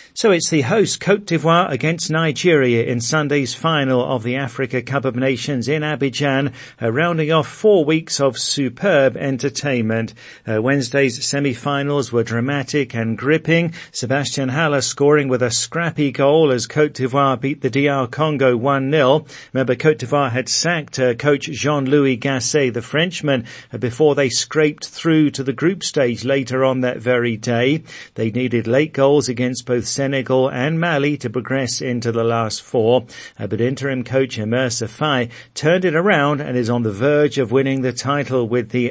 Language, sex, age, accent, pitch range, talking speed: English, male, 50-69, British, 125-150 Hz, 170 wpm